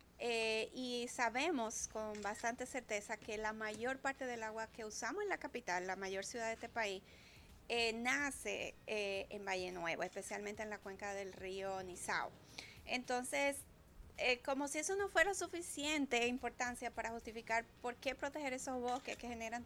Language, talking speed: Spanish, 165 wpm